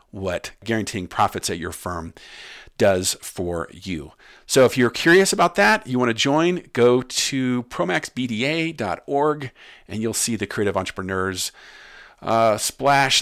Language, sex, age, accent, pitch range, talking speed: English, male, 50-69, American, 95-125 Hz, 135 wpm